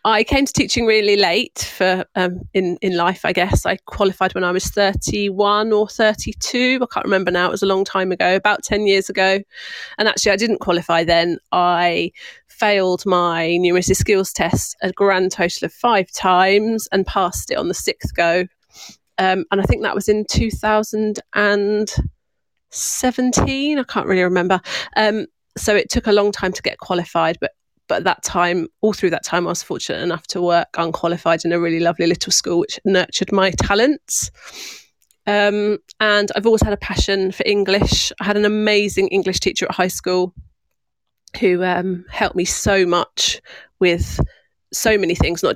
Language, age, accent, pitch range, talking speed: English, 30-49, British, 180-210 Hz, 180 wpm